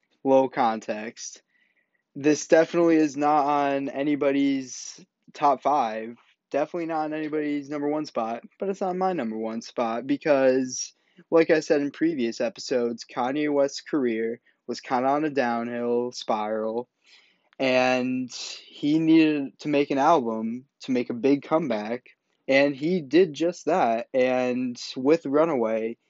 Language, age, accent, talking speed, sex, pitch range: English, 20-39, American, 140 wpm, male, 120-155 Hz